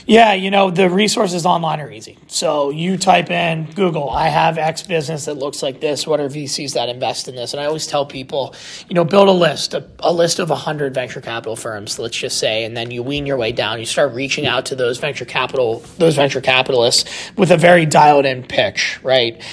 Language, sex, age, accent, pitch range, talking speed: English, male, 30-49, American, 130-175 Hz, 230 wpm